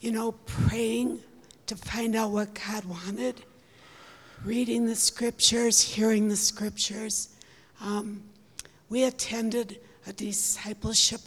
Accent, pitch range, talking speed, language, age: American, 200-230 Hz, 105 wpm, English, 60-79